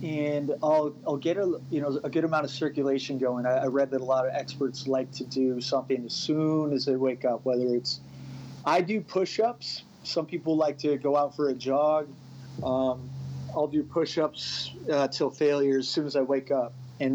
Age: 30-49